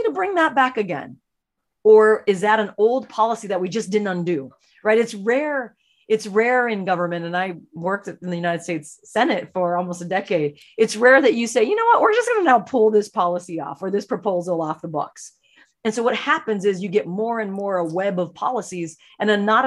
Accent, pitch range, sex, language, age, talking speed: American, 170-220 Hz, female, English, 30-49, 230 wpm